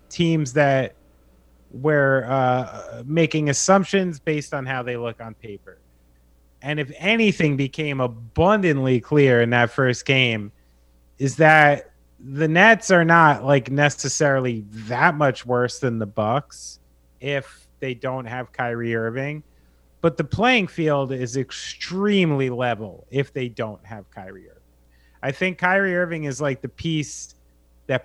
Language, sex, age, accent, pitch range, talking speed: English, male, 30-49, American, 115-150 Hz, 140 wpm